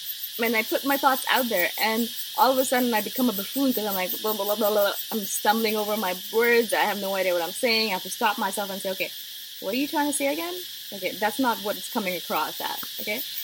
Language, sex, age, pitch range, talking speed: English, female, 20-39, 190-250 Hz, 270 wpm